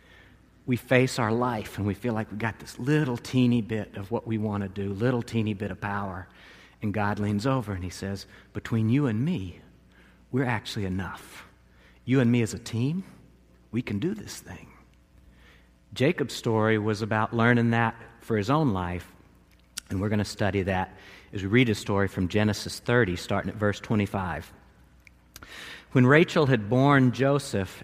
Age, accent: 50-69, American